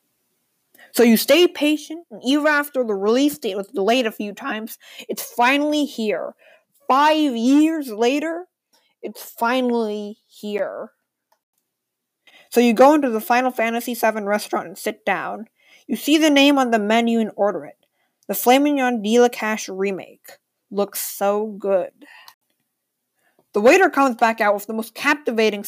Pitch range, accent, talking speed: 210-270 Hz, American, 150 wpm